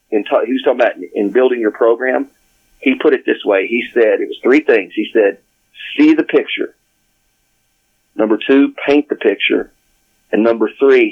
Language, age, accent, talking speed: English, 40-59, American, 175 wpm